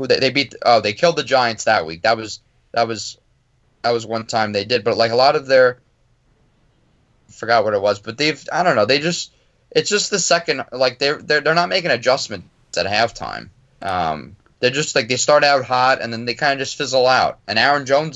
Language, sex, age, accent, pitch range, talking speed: English, male, 20-39, American, 115-150 Hz, 225 wpm